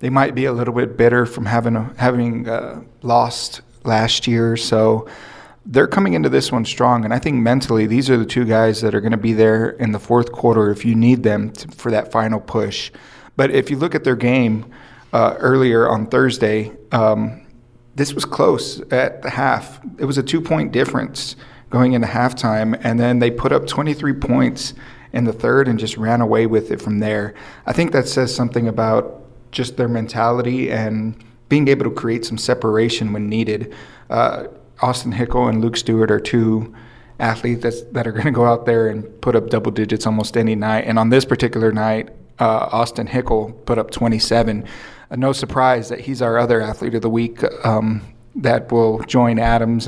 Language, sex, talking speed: English, male, 195 wpm